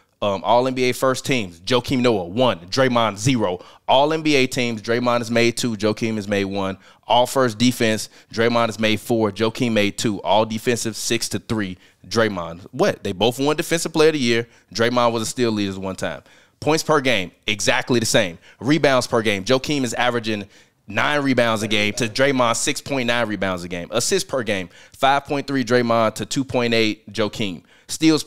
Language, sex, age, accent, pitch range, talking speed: English, male, 20-39, American, 105-130 Hz, 180 wpm